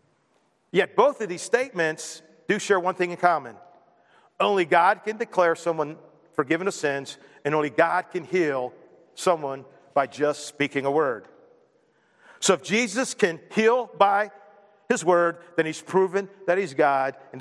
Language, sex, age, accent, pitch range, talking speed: English, male, 50-69, American, 145-210 Hz, 155 wpm